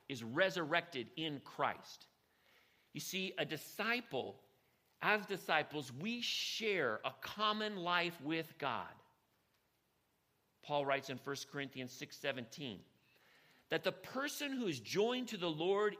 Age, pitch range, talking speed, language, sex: 50-69, 155-225 Hz, 125 wpm, English, male